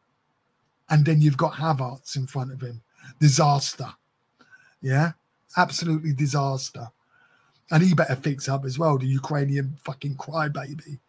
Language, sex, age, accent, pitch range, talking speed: English, male, 20-39, British, 135-160 Hz, 130 wpm